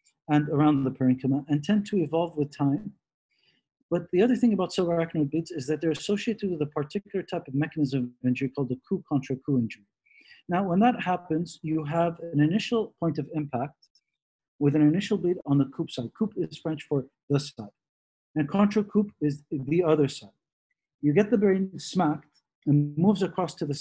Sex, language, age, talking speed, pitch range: male, English, 50-69, 185 wpm, 145-185 Hz